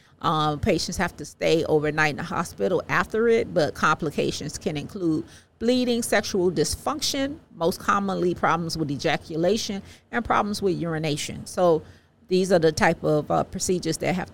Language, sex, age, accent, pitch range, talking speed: English, female, 40-59, American, 155-205 Hz, 155 wpm